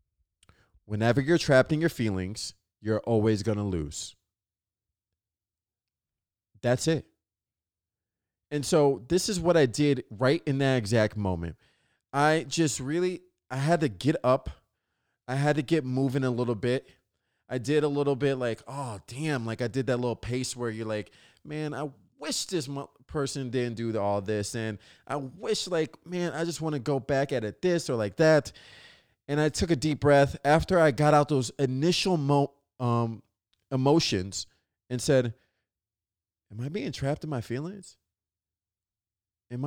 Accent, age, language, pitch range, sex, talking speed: American, 20-39, English, 100-150 Hz, male, 165 wpm